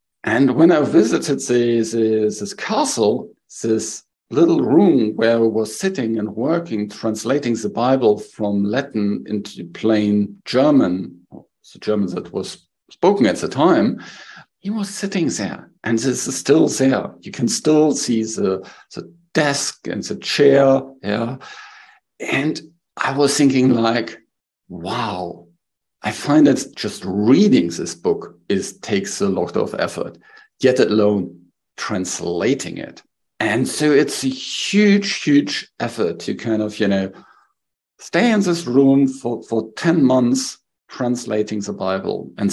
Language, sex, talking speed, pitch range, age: English, male, 140 wpm, 105-145 Hz, 50-69